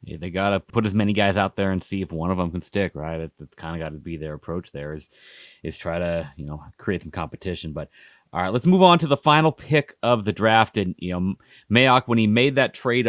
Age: 30-49